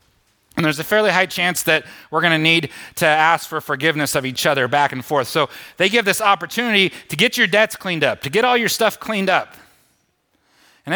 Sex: male